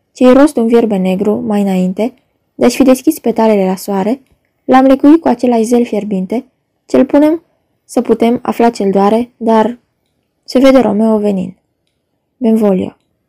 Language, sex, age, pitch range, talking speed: Romanian, female, 20-39, 205-255 Hz, 145 wpm